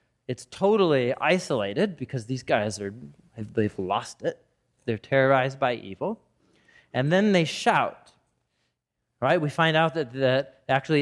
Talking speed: 135 wpm